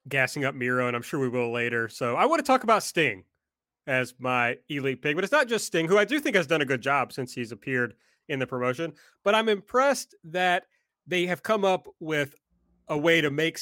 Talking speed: 235 wpm